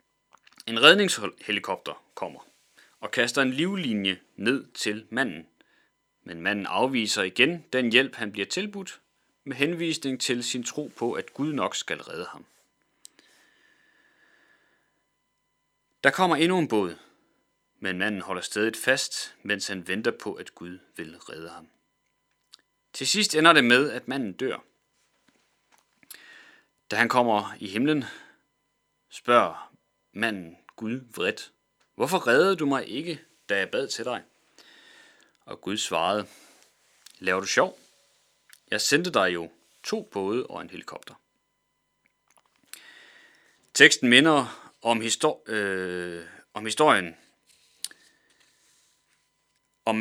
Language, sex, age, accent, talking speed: Danish, male, 30-49, native, 120 wpm